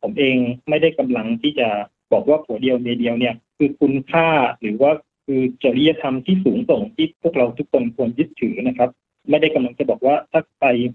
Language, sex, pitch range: Thai, male, 125-175 Hz